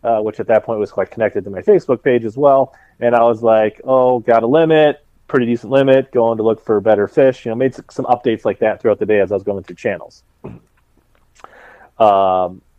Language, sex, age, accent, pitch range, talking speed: English, male, 30-49, American, 105-125 Hz, 225 wpm